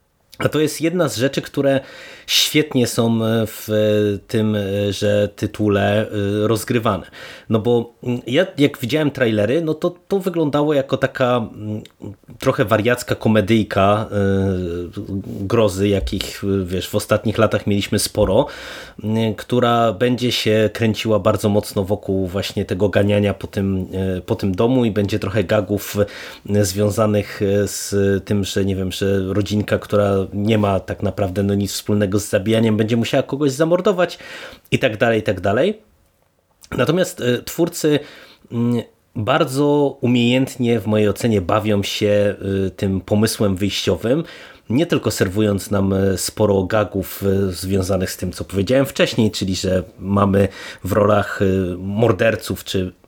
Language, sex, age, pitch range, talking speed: Polish, male, 30-49, 100-120 Hz, 130 wpm